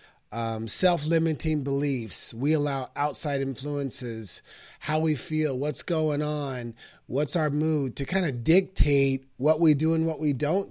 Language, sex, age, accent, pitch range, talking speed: English, male, 30-49, American, 140-180 Hz, 150 wpm